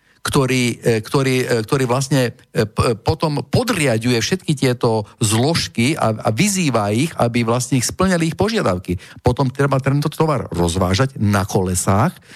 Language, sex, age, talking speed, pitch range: Slovak, male, 50-69, 125 wpm, 115-165 Hz